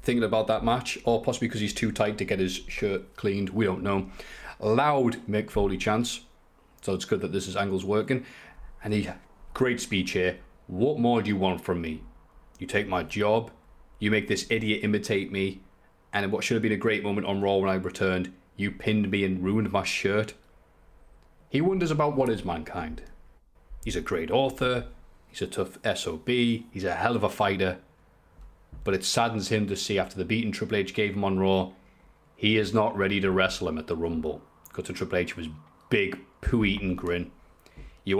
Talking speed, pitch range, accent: 200 wpm, 90-105 Hz, British